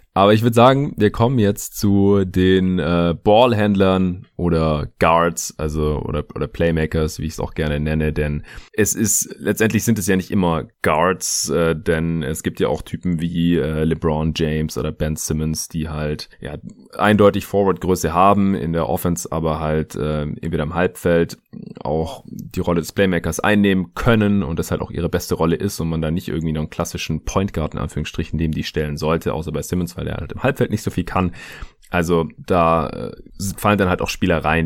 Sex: male